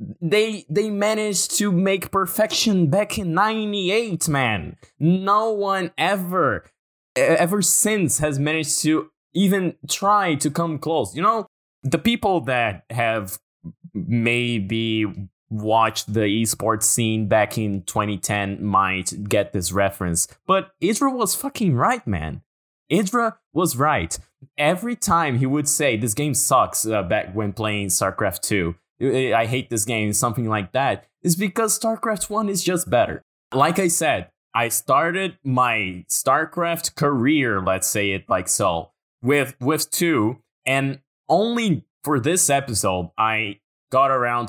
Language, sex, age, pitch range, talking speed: English, male, 20-39, 110-175 Hz, 140 wpm